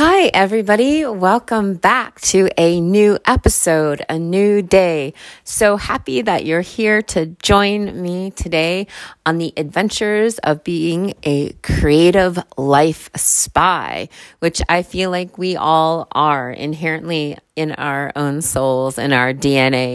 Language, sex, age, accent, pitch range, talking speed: English, female, 30-49, American, 145-205 Hz, 130 wpm